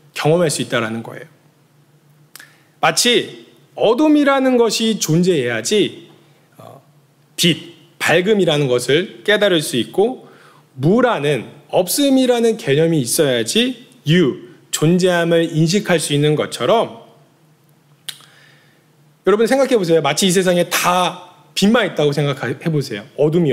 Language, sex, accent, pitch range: Korean, male, native, 145-190 Hz